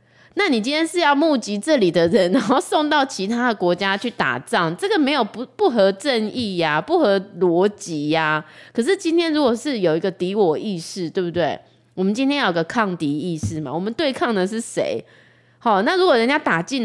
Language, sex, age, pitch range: Chinese, female, 20-39, 180-260 Hz